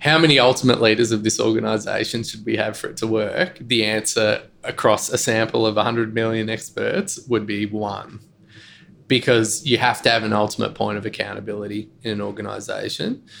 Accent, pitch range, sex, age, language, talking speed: Australian, 105-120 Hz, male, 20-39, English, 175 wpm